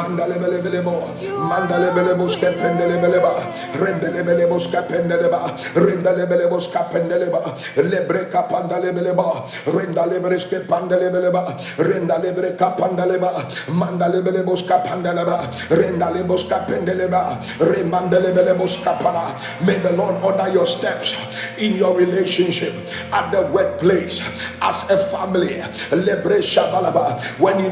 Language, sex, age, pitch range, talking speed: English, male, 50-69, 180-200 Hz, 85 wpm